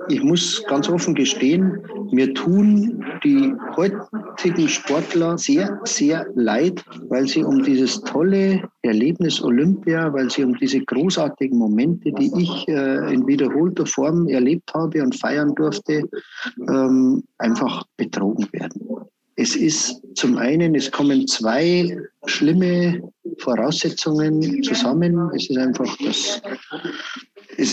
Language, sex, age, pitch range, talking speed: German, male, 50-69, 160-245 Hz, 115 wpm